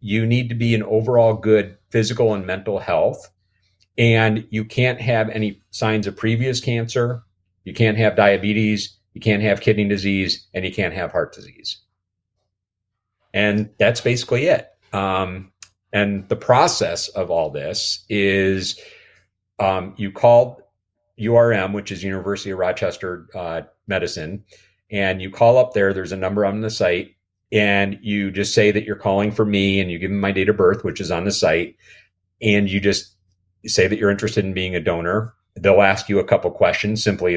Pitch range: 95-110 Hz